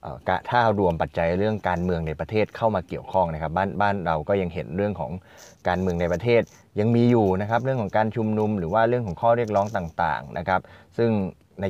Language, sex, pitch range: Thai, male, 90-115 Hz